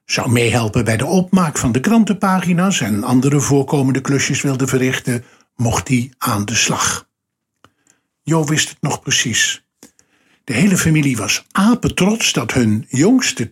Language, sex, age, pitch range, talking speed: Dutch, male, 50-69, 120-170 Hz, 140 wpm